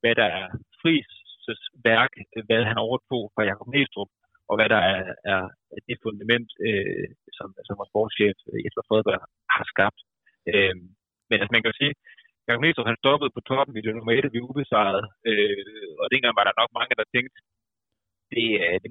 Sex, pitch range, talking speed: male, 105-130 Hz, 185 wpm